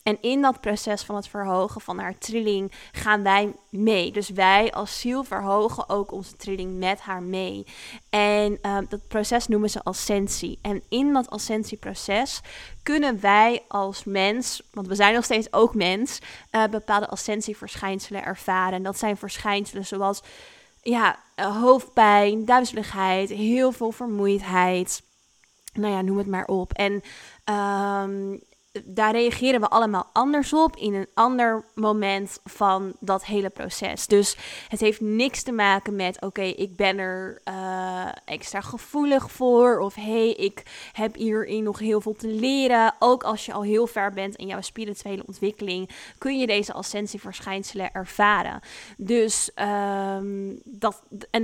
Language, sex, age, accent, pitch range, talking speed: Dutch, female, 20-39, Dutch, 195-225 Hz, 145 wpm